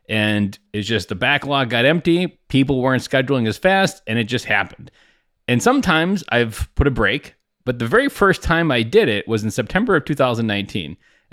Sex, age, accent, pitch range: male, 30-49, American, 105-140 Hz